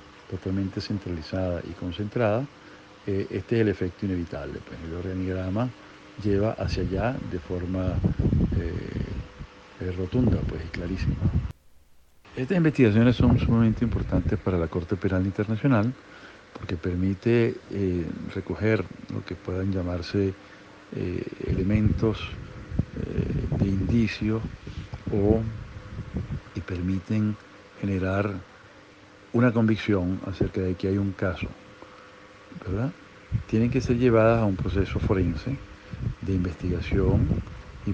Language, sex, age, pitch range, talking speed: Spanish, male, 60-79, 90-110 Hz, 105 wpm